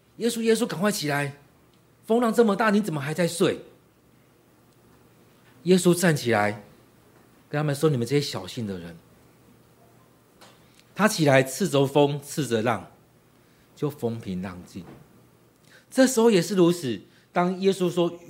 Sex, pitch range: male, 115-180 Hz